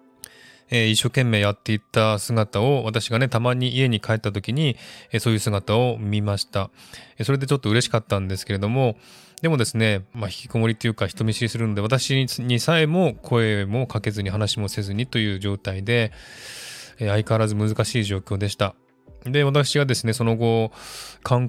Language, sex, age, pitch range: Japanese, male, 20-39, 100-125 Hz